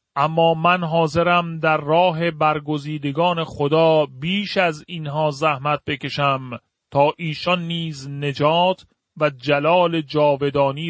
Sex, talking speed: male, 105 wpm